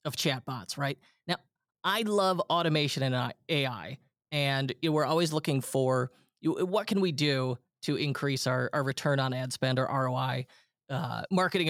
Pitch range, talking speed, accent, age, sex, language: 130-175 Hz, 165 wpm, American, 20-39, male, English